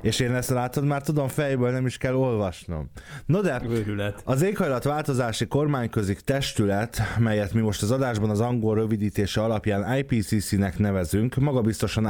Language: Hungarian